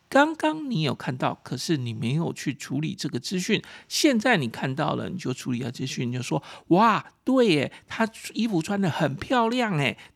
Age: 50-69